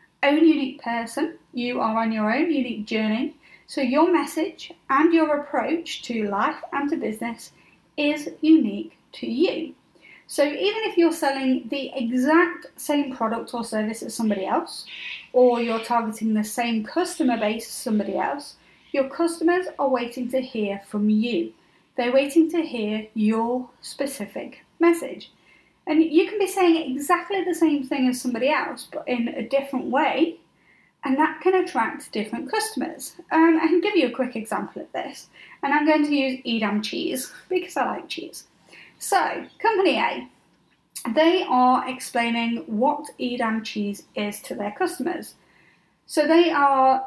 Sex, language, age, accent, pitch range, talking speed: female, English, 30-49, British, 235-320 Hz, 160 wpm